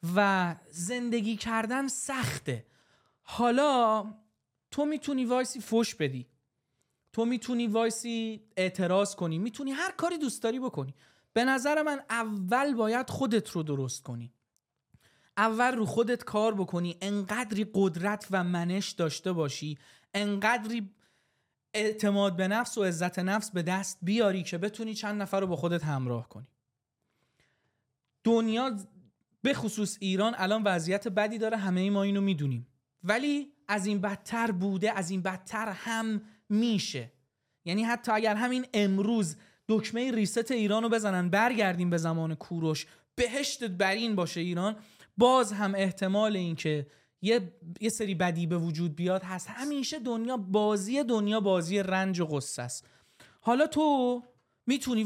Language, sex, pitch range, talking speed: Persian, male, 175-230 Hz, 135 wpm